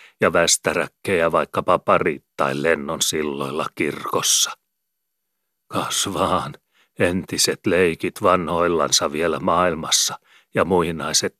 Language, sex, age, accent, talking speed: Finnish, male, 40-59, native, 85 wpm